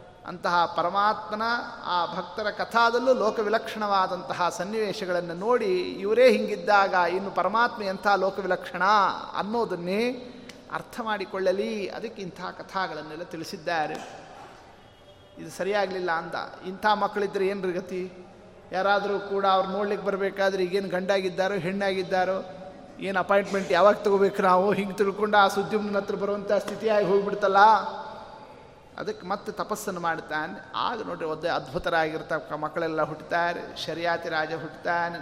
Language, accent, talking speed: Kannada, native, 105 wpm